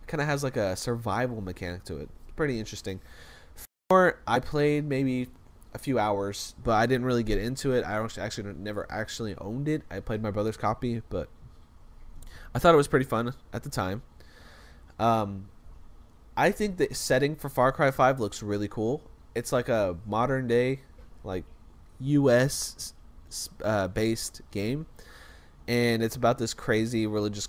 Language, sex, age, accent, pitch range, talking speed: English, male, 20-39, American, 85-130 Hz, 160 wpm